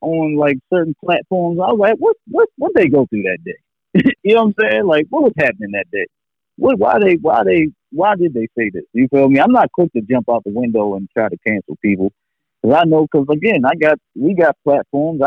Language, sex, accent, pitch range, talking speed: English, male, American, 125-160 Hz, 245 wpm